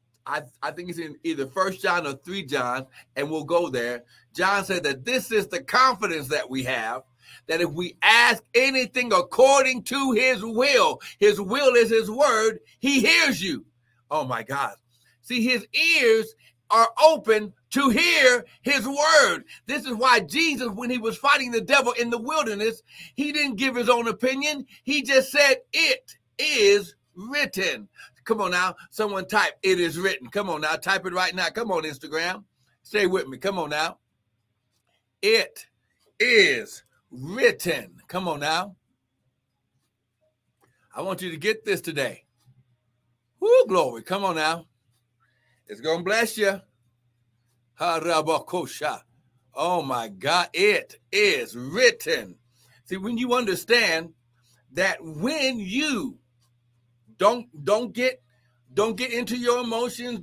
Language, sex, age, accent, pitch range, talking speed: English, male, 60-79, American, 150-250 Hz, 145 wpm